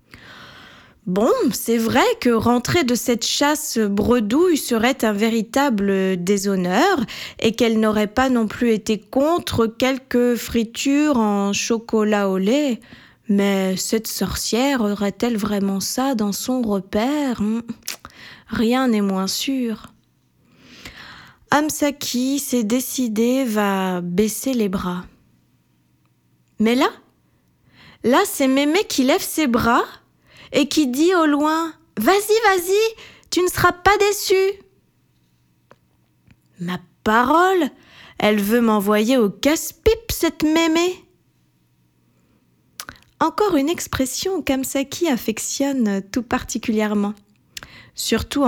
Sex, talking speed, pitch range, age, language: female, 110 wpm, 210-280 Hz, 20-39, French